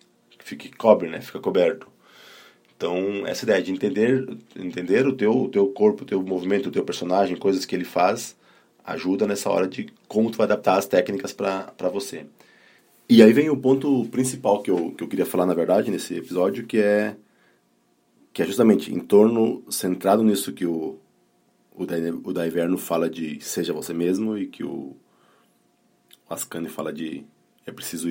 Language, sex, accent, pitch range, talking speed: Portuguese, male, Brazilian, 85-100 Hz, 175 wpm